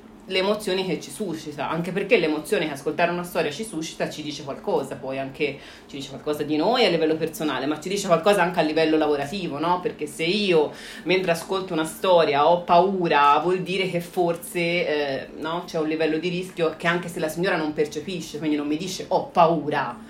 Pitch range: 150-175 Hz